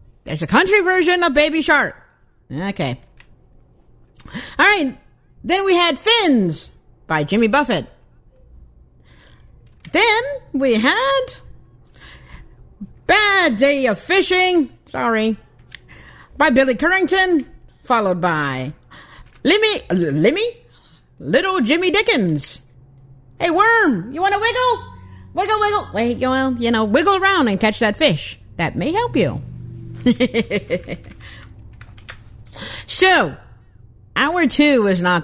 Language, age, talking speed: English, 50-69, 100 wpm